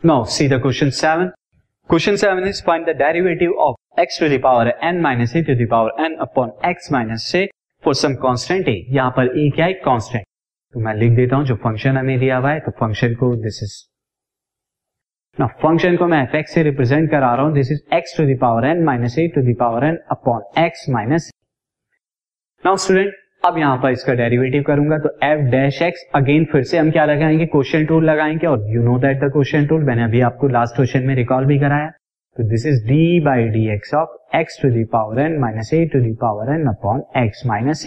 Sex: male